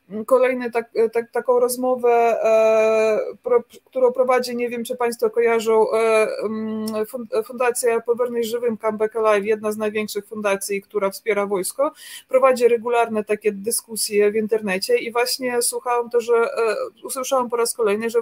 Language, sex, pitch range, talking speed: Polish, female, 220-255 Hz, 145 wpm